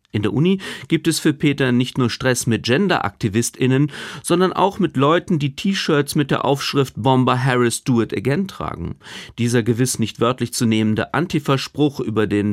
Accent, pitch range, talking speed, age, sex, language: German, 115-155 Hz, 175 wpm, 40-59, male, German